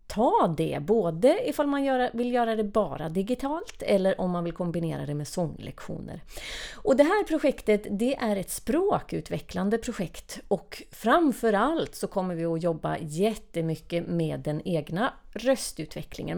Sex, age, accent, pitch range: female, 30-49, native, 175-245 Hz